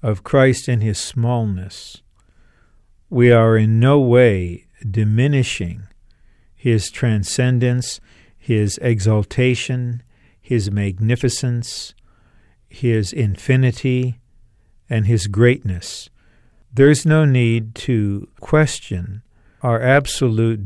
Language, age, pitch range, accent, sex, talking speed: English, 50-69, 100-125 Hz, American, male, 85 wpm